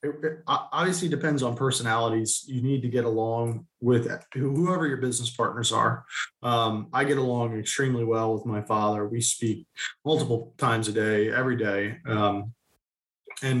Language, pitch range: English, 110-130 Hz